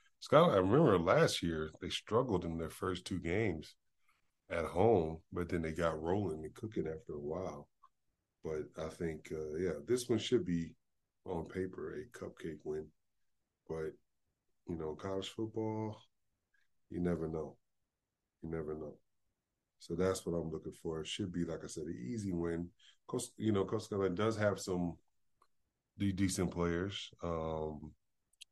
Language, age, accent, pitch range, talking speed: English, 20-39, American, 80-95 Hz, 160 wpm